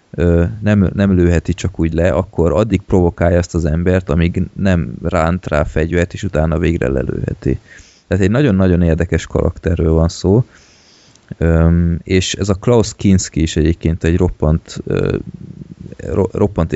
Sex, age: male, 20-39